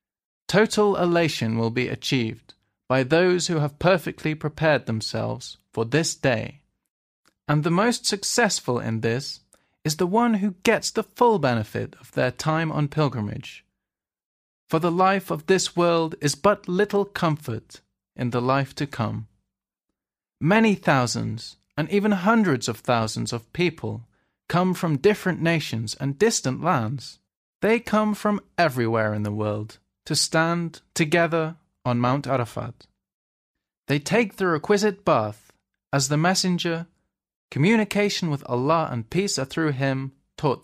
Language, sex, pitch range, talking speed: English, male, 120-180 Hz, 140 wpm